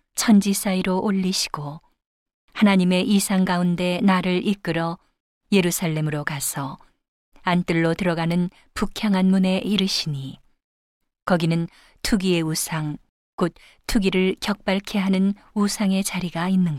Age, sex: 40-59, female